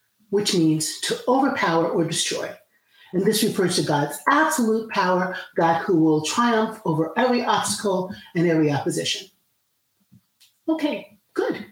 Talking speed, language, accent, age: 130 wpm, English, American, 50-69